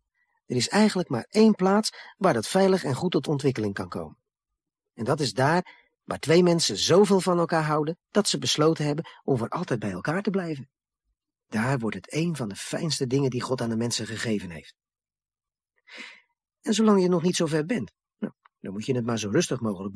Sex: male